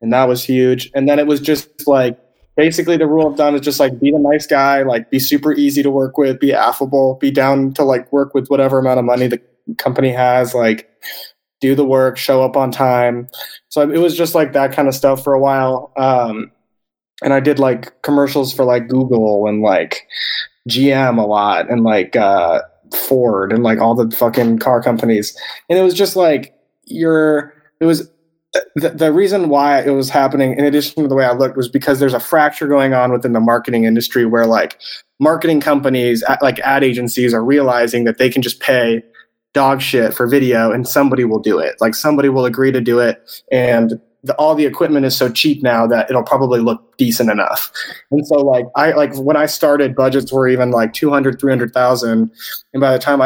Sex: male